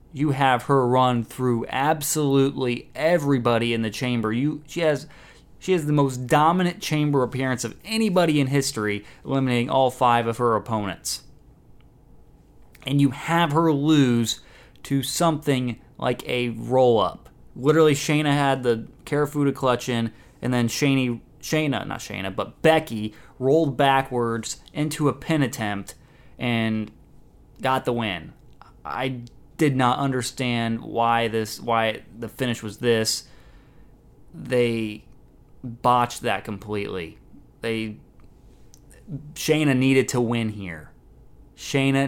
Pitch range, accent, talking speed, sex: 115-140 Hz, American, 125 wpm, male